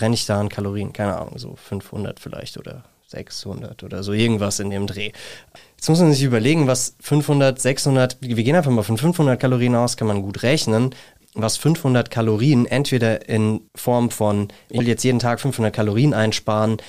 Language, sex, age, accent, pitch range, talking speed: German, male, 30-49, German, 105-130 Hz, 190 wpm